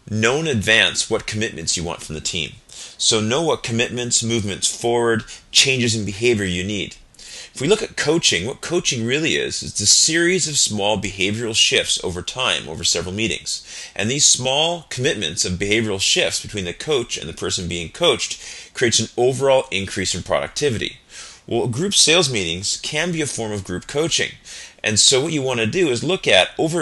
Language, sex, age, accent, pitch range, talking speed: English, male, 30-49, American, 100-145 Hz, 190 wpm